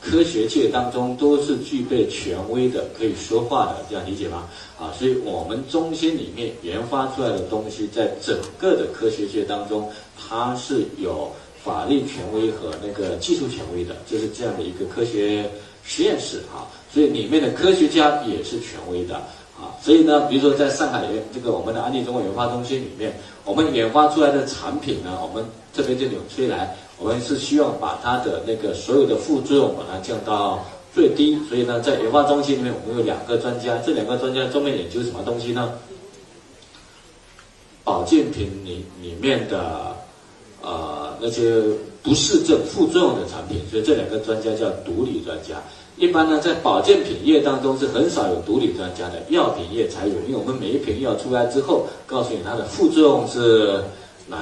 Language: Chinese